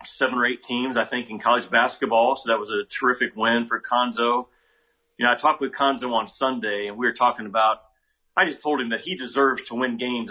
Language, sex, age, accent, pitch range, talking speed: English, male, 40-59, American, 120-140 Hz, 240 wpm